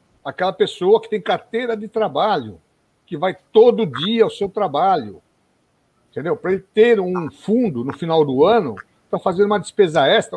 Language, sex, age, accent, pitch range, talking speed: Portuguese, male, 60-79, Brazilian, 160-220 Hz, 170 wpm